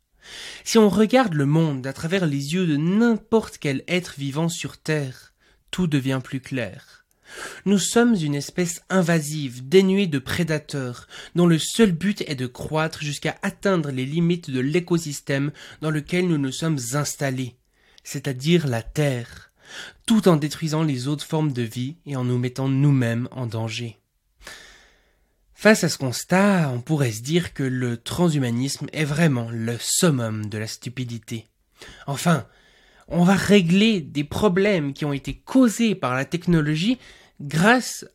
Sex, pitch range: male, 135-195 Hz